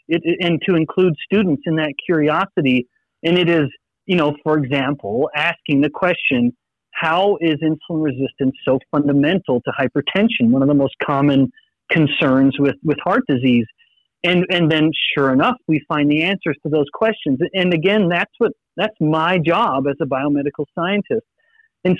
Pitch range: 145-200 Hz